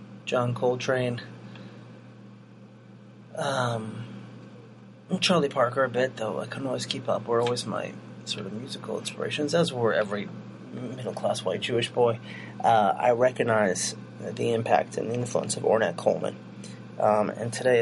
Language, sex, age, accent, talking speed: English, male, 30-49, American, 140 wpm